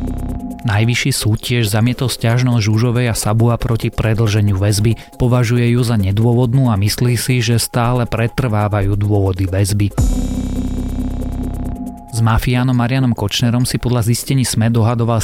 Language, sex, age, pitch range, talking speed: Slovak, male, 30-49, 105-120 Hz, 125 wpm